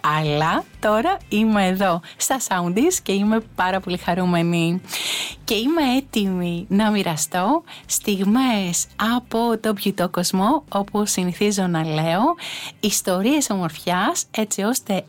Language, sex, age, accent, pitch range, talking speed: English, female, 30-49, Greek, 180-230 Hz, 115 wpm